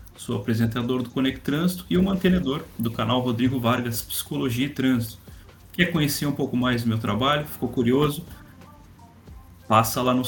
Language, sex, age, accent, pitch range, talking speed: Portuguese, male, 30-49, Brazilian, 105-140 Hz, 165 wpm